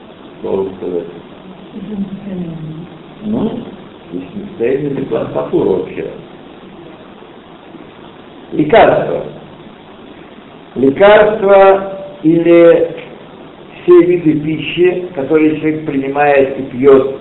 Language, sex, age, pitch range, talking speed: Russian, male, 60-79, 135-200 Hz, 75 wpm